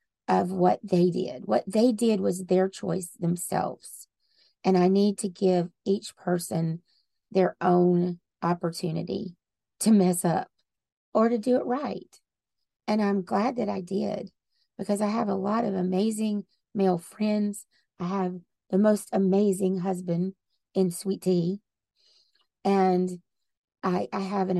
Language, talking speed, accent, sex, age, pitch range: English, 140 wpm, American, female, 30-49, 185-215 Hz